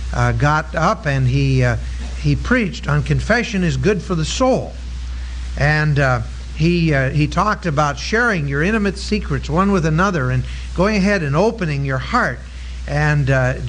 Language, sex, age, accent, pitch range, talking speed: English, male, 50-69, American, 120-190 Hz, 165 wpm